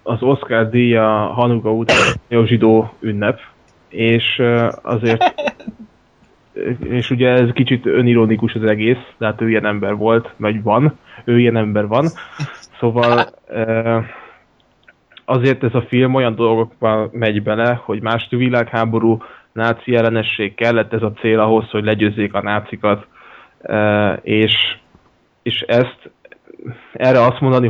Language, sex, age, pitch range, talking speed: Hungarian, male, 20-39, 110-120 Hz, 125 wpm